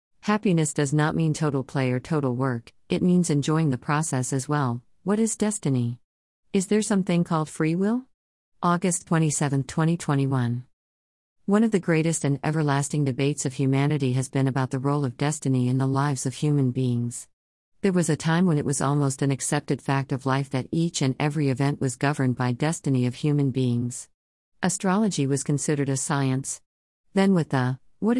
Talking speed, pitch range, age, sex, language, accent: 180 wpm, 130-165 Hz, 50-69, female, English, American